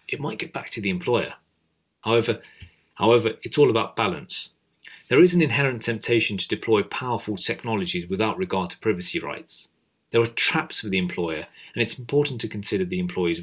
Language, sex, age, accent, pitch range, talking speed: English, male, 40-59, British, 100-135 Hz, 180 wpm